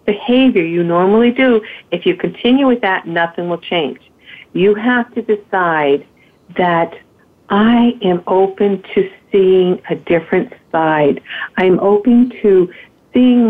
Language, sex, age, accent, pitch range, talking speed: English, female, 50-69, American, 175-210 Hz, 130 wpm